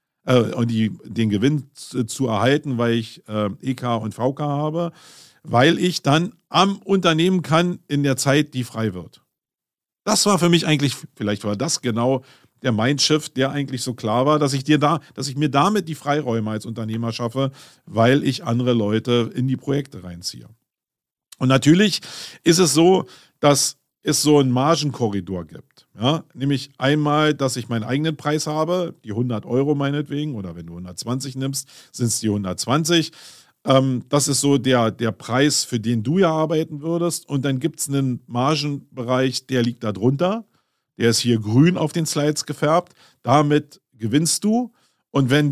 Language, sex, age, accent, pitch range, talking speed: German, male, 50-69, German, 120-150 Hz, 165 wpm